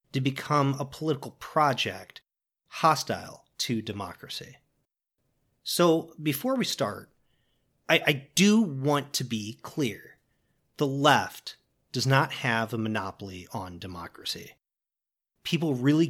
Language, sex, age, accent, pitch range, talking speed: English, male, 40-59, American, 115-150 Hz, 110 wpm